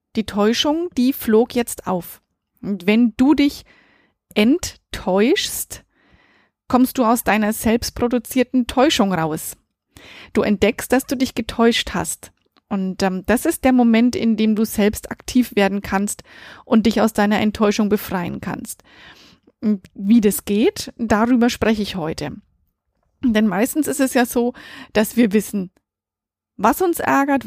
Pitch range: 205-250 Hz